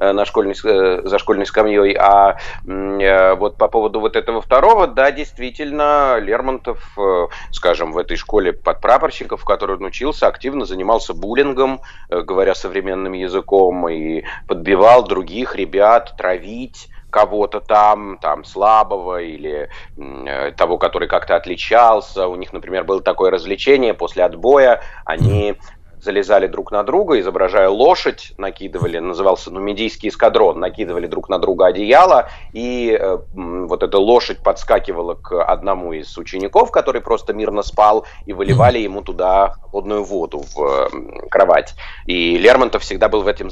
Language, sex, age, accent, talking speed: Russian, male, 30-49, native, 140 wpm